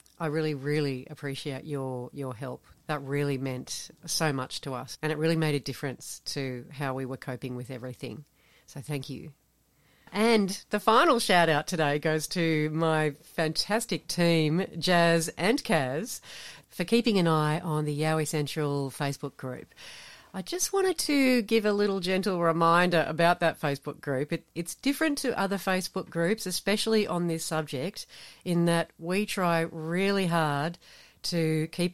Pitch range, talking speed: 150-185 Hz, 160 wpm